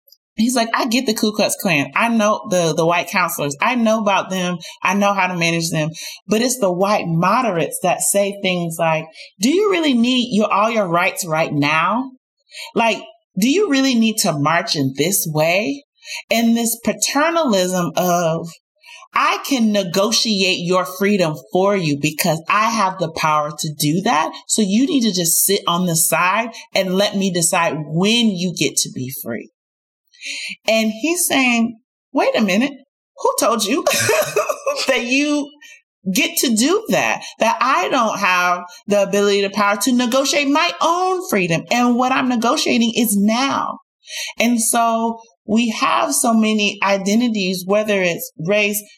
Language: English